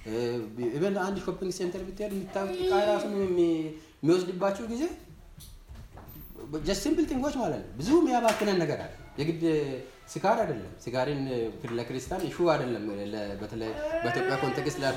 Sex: male